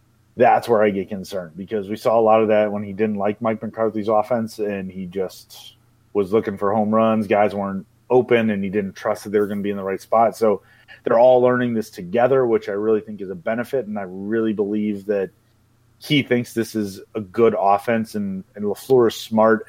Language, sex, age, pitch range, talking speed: English, male, 30-49, 105-120 Hz, 225 wpm